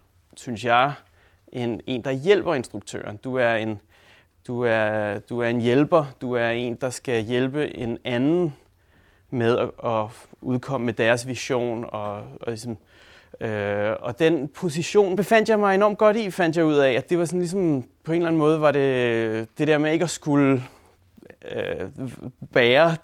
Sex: male